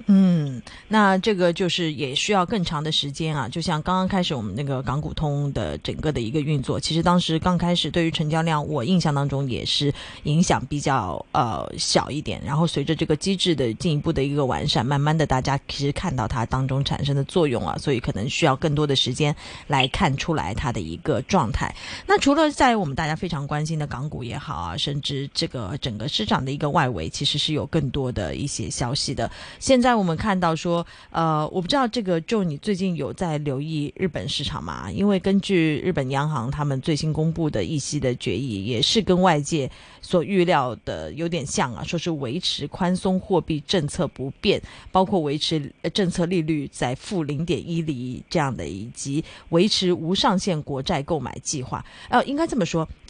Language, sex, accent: Chinese, female, native